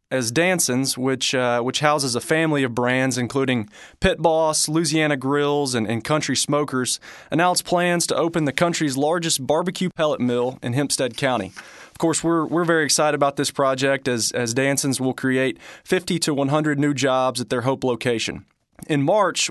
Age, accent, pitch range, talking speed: 20-39, American, 130-160 Hz, 175 wpm